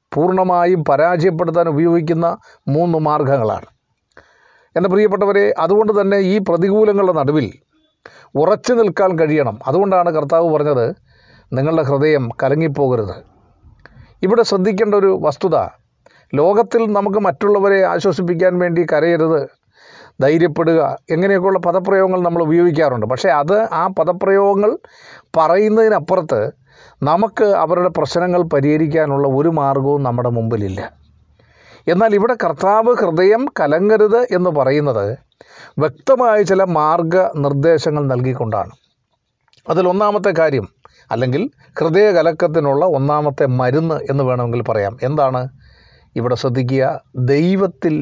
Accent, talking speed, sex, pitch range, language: native, 90 wpm, male, 140-195 Hz, Malayalam